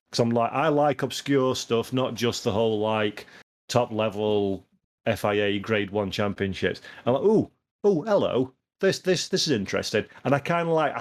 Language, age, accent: English, 30-49, British